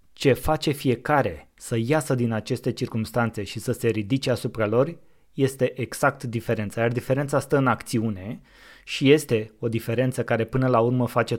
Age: 20-39